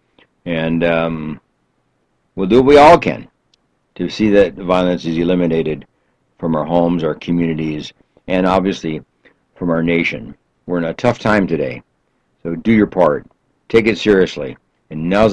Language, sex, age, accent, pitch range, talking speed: English, male, 60-79, American, 80-100 Hz, 155 wpm